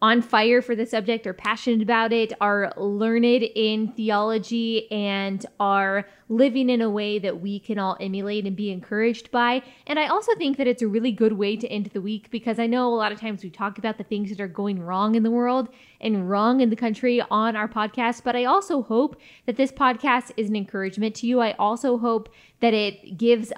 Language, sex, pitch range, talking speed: English, female, 210-240 Hz, 220 wpm